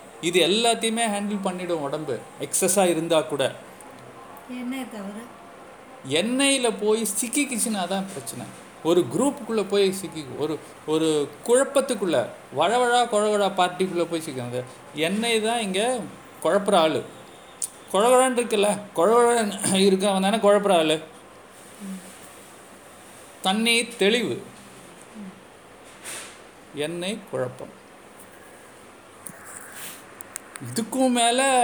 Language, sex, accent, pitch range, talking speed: Tamil, male, native, 170-225 Hz, 85 wpm